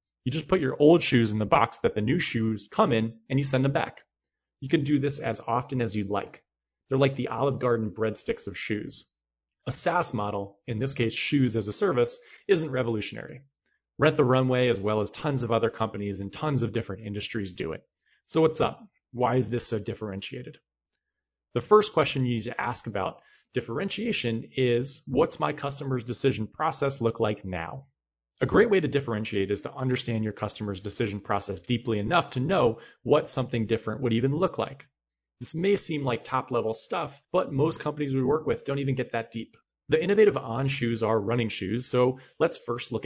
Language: English